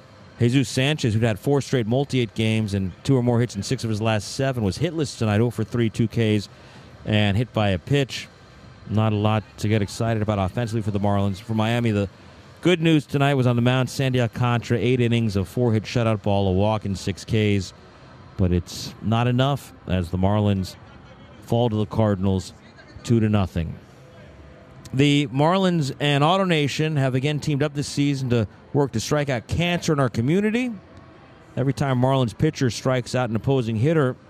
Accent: American